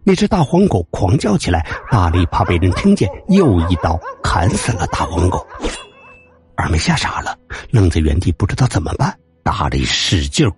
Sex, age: male, 60-79